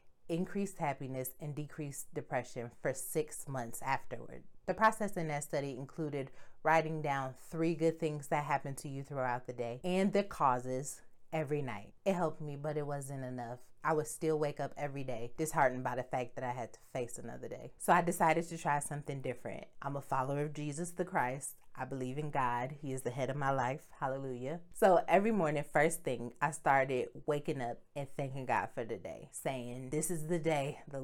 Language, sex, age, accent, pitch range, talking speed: English, female, 30-49, American, 130-160 Hz, 200 wpm